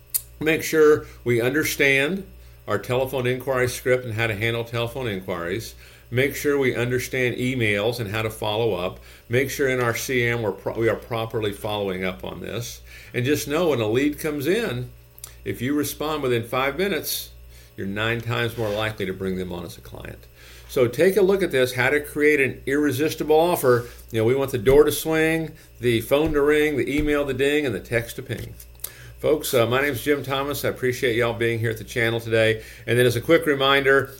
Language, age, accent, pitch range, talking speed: English, 50-69, American, 105-135 Hz, 205 wpm